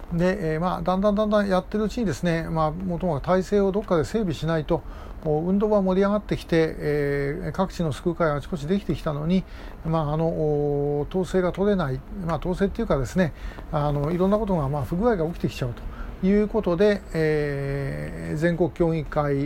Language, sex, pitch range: Japanese, male, 145-190 Hz